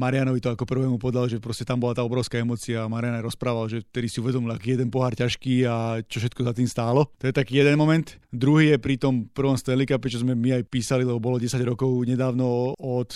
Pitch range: 125-135 Hz